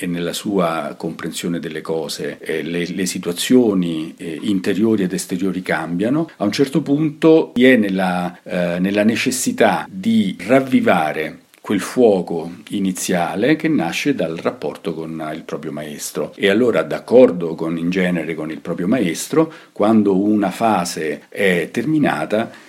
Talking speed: 135 wpm